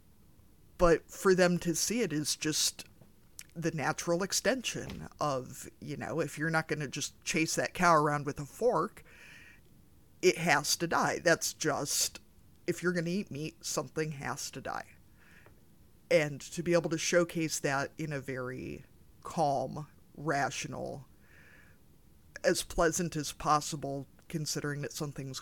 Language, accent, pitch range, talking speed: English, American, 140-175 Hz, 145 wpm